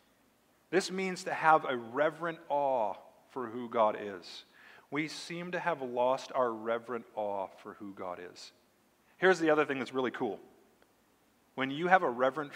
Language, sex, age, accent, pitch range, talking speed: English, male, 40-59, American, 115-160 Hz, 165 wpm